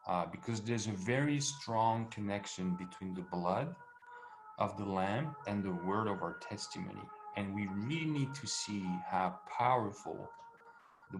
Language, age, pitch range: English, 40-59, 95-125 Hz